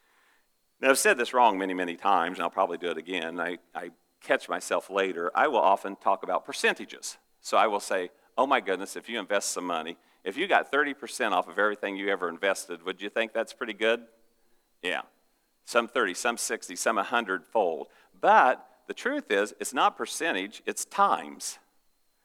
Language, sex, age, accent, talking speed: English, male, 50-69, American, 185 wpm